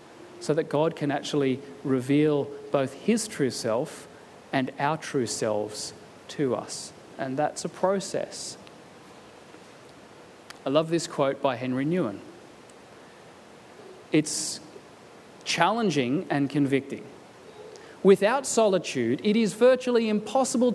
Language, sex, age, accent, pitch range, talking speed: English, male, 30-49, Australian, 140-215 Hz, 105 wpm